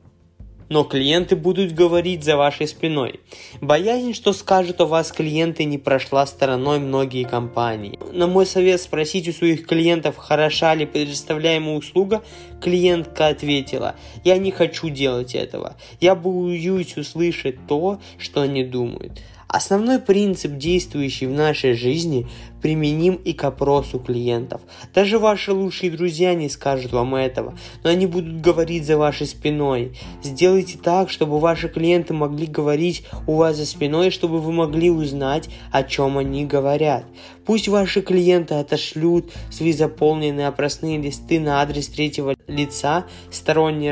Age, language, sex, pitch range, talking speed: 20-39, Russian, male, 140-175 Hz, 140 wpm